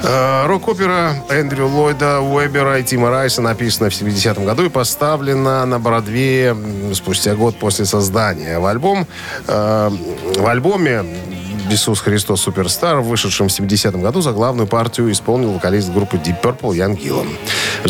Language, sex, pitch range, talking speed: Russian, male, 105-135 Hz, 140 wpm